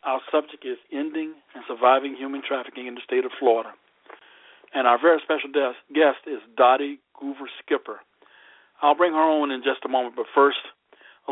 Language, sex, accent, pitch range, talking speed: English, male, American, 125-170 Hz, 170 wpm